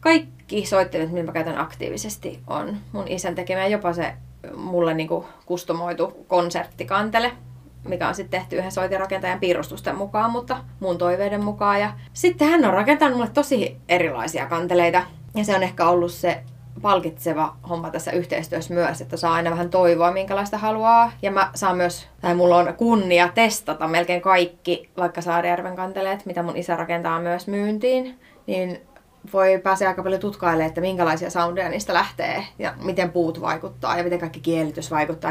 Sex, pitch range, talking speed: female, 165-190 Hz, 160 wpm